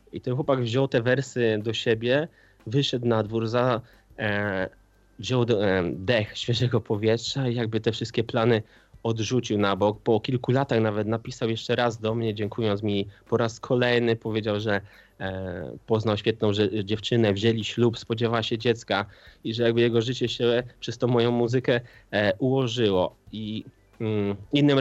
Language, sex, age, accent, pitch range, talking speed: Polish, male, 20-39, native, 105-125 Hz, 145 wpm